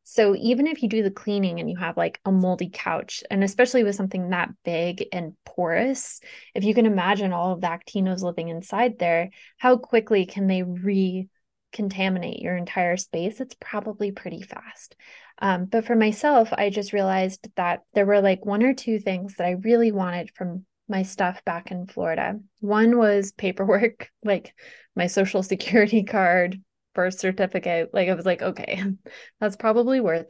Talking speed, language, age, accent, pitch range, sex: 175 wpm, English, 20-39, American, 180-215 Hz, female